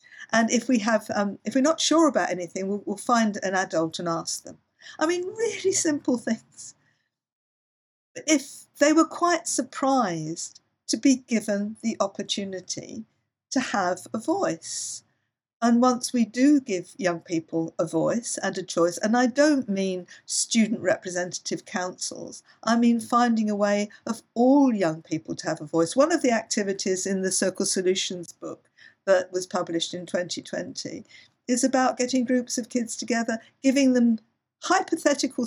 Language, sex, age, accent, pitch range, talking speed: English, female, 50-69, British, 195-255 Hz, 160 wpm